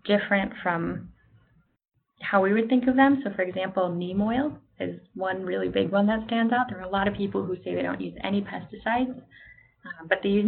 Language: English